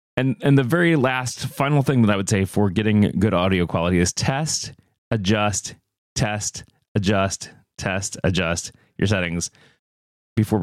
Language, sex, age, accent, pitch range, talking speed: English, male, 30-49, American, 90-120 Hz, 145 wpm